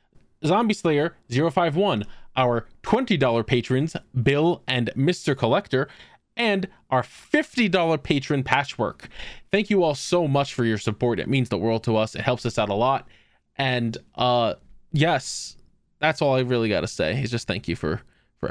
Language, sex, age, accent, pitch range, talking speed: English, male, 20-39, American, 115-145 Hz, 165 wpm